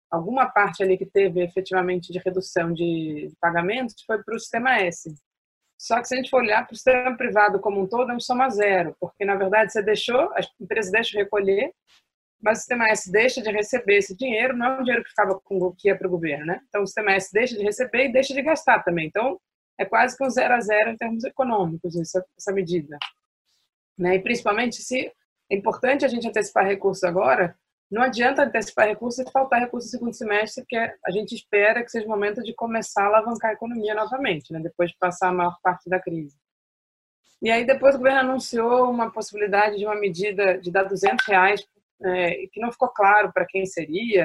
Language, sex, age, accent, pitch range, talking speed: Portuguese, female, 20-39, Brazilian, 190-235 Hz, 215 wpm